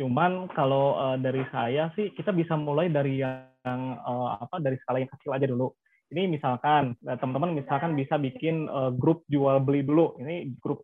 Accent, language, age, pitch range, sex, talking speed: native, Indonesian, 20-39, 140-170 Hz, male, 165 wpm